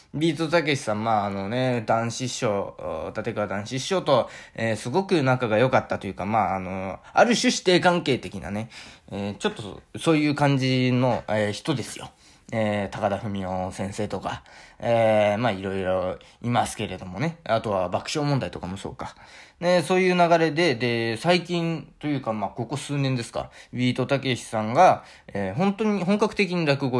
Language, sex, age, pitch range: Japanese, male, 20-39, 105-145 Hz